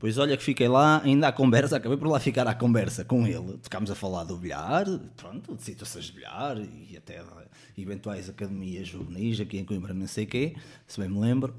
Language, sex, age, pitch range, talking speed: Portuguese, male, 20-39, 115-195 Hz, 215 wpm